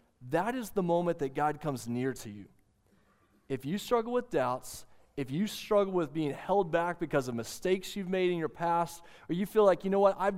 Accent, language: American, English